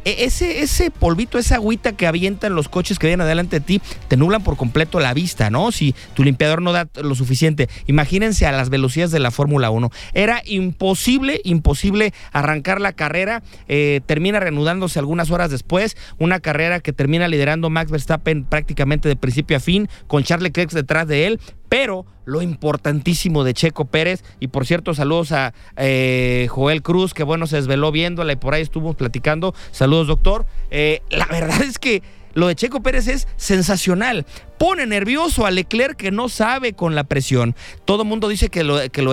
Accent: Mexican